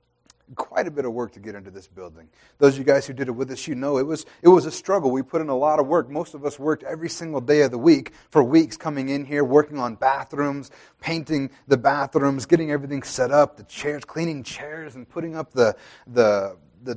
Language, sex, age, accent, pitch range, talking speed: English, male, 30-49, American, 125-155 Hz, 245 wpm